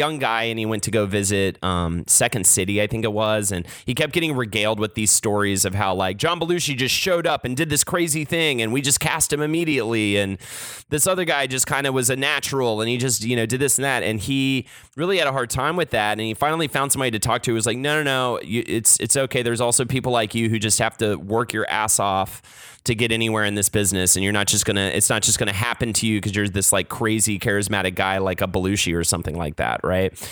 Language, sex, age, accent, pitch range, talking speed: English, male, 30-49, American, 100-130 Hz, 265 wpm